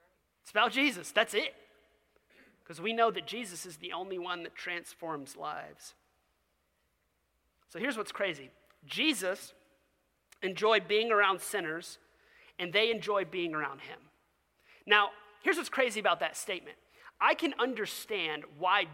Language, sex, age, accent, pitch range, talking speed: English, male, 30-49, American, 175-255 Hz, 135 wpm